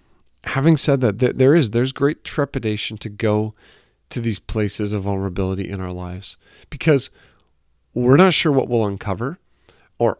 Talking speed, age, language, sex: 145 wpm, 40-59, English, male